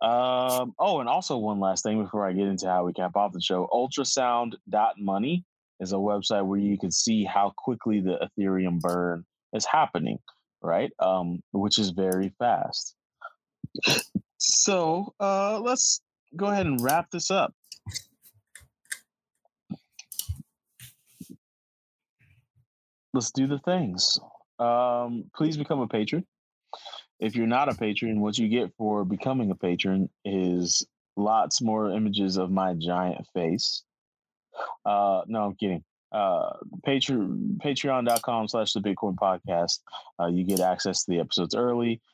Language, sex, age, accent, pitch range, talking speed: English, male, 20-39, American, 95-125 Hz, 130 wpm